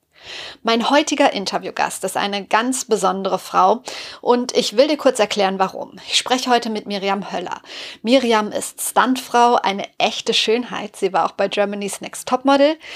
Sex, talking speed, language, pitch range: female, 155 wpm, German, 200-245 Hz